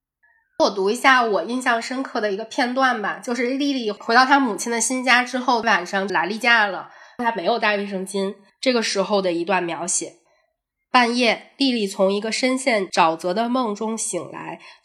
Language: Chinese